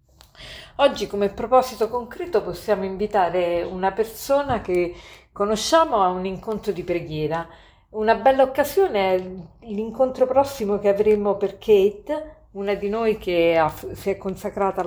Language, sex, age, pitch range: Italian, female, 50-69, 175-220 Hz